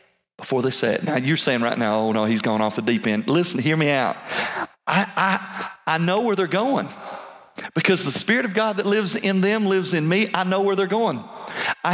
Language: English